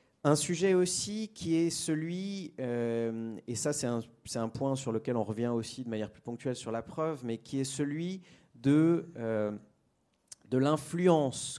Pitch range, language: 110-150 Hz, French